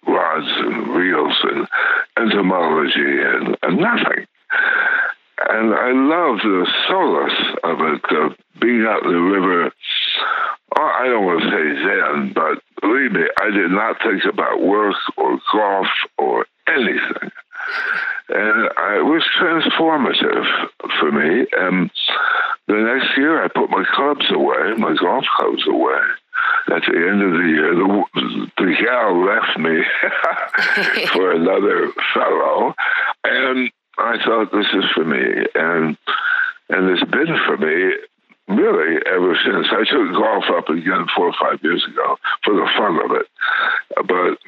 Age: 60-79